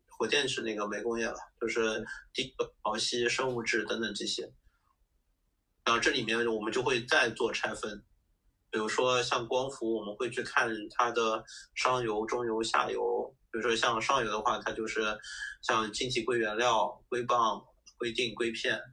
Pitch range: 110-130 Hz